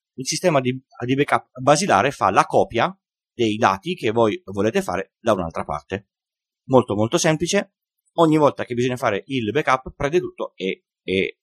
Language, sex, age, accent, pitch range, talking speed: Italian, male, 30-49, native, 105-150 Hz, 160 wpm